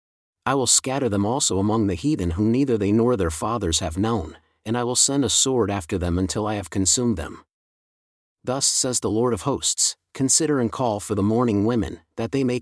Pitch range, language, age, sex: 100-130 Hz, English, 40-59, male